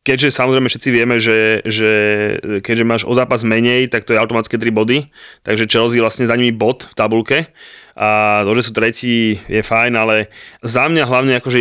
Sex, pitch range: male, 110-130 Hz